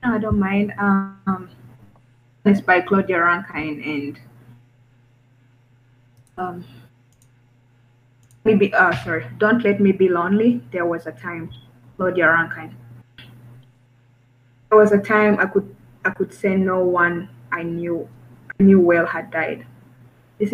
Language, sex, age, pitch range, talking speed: English, female, 20-39, 120-185 Hz, 125 wpm